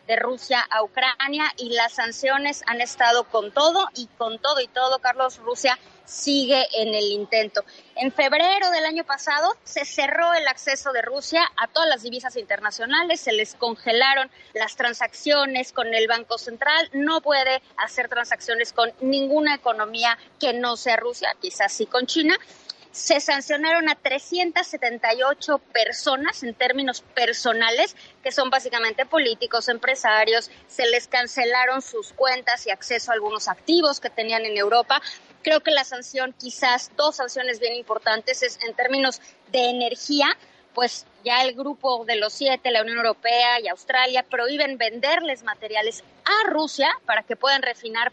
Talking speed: 155 wpm